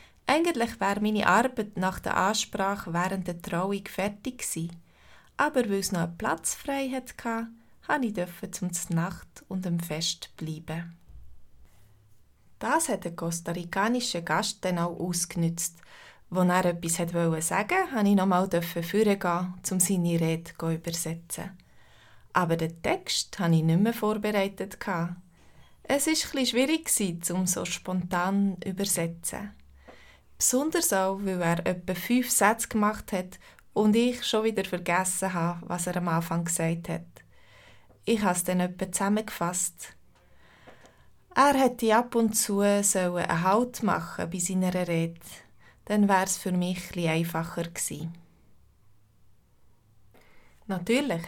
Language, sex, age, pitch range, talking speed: German, female, 20-39, 170-210 Hz, 135 wpm